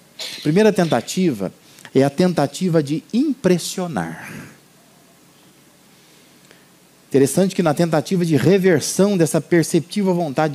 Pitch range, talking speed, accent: 145-185 Hz, 90 wpm, Brazilian